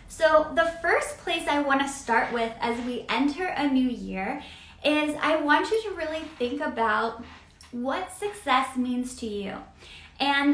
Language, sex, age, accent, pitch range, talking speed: English, female, 10-29, American, 235-295 Hz, 165 wpm